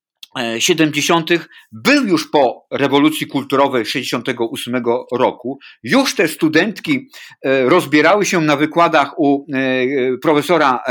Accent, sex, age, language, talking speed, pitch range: native, male, 50-69, Polish, 95 wpm, 145-200 Hz